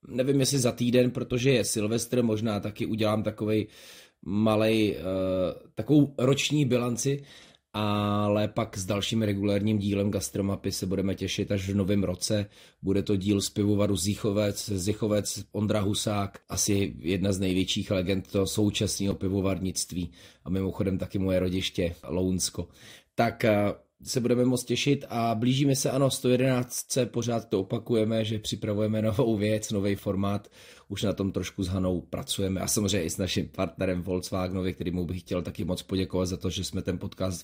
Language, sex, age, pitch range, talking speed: Czech, male, 30-49, 95-115 Hz, 160 wpm